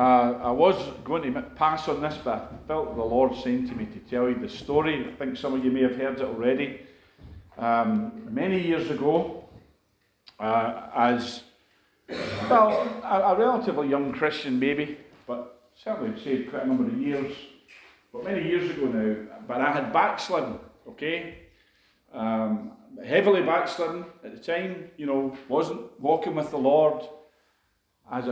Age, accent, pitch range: 50-69, British, 125-180 Hz